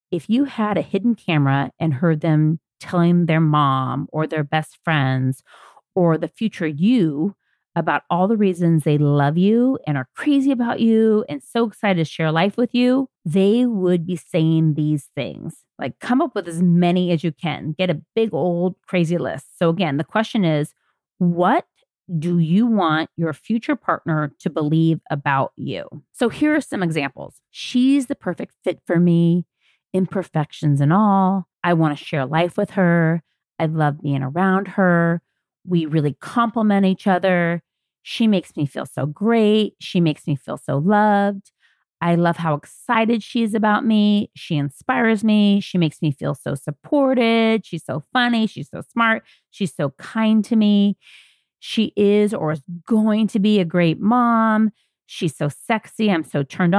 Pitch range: 155-215 Hz